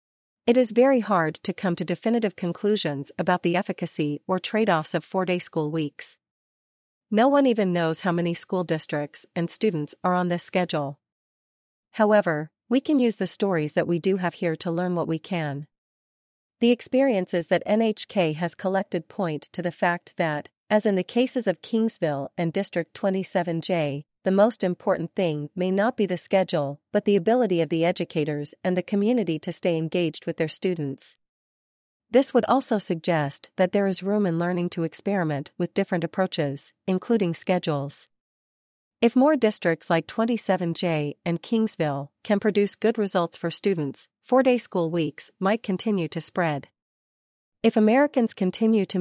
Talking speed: 165 wpm